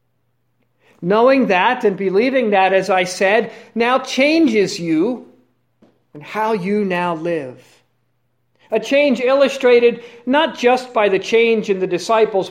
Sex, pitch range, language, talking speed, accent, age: male, 155-240 Hz, English, 130 wpm, American, 50-69